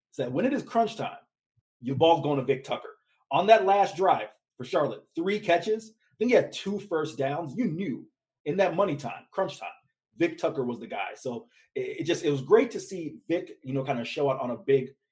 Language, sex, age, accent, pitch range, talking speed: English, male, 30-49, American, 120-165 Hz, 235 wpm